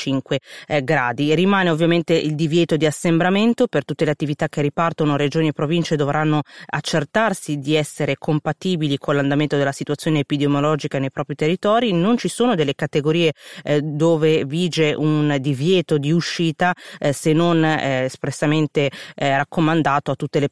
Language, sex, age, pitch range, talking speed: Italian, female, 30-49, 145-165 Hz, 150 wpm